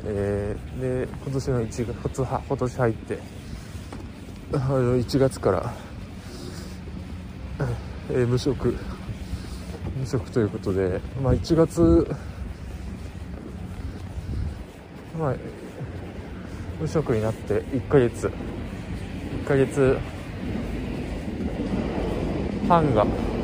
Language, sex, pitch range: Japanese, male, 95-140 Hz